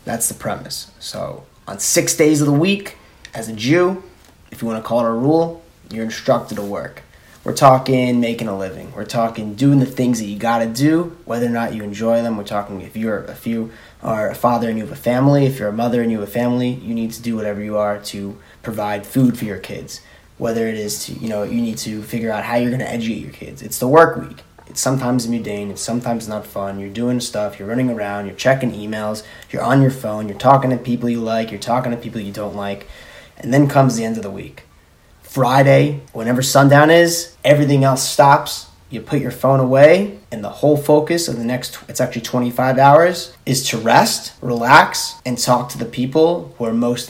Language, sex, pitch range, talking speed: English, male, 110-135 Hz, 230 wpm